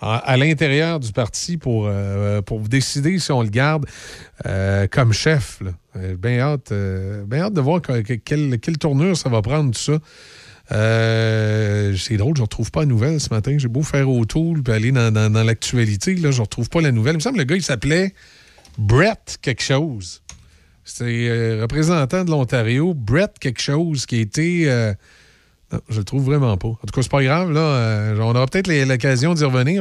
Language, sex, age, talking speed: French, male, 40-59, 215 wpm